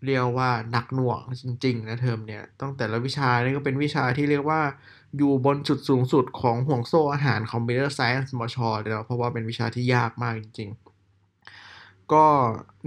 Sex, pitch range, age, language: male, 115-135 Hz, 20-39, Thai